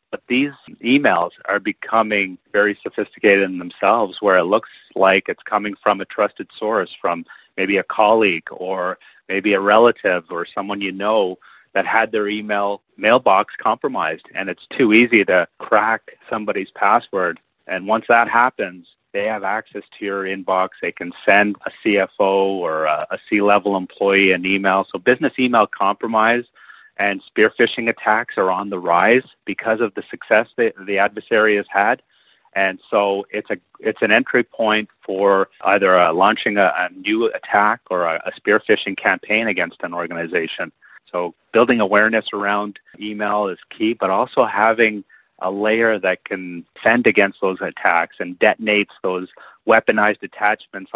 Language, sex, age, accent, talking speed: English, male, 30-49, American, 160 wpm